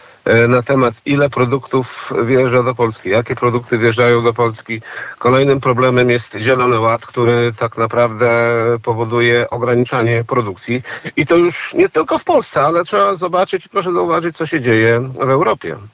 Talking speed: 150 wpm